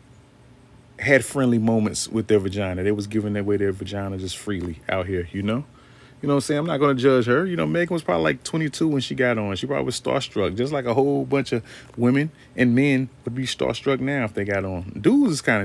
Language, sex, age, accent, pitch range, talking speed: English, male, 30-49, American, 105-125 Hz, 240 wpm